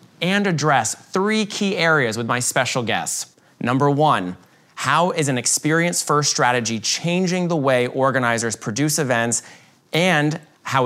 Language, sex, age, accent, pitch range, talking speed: English, male, 30-49, American, 130-175 Hz, 135 wpm